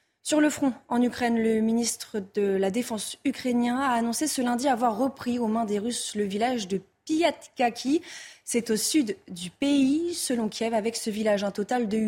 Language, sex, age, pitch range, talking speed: French, female, 20-39, 205-275 Hz, 190 wpm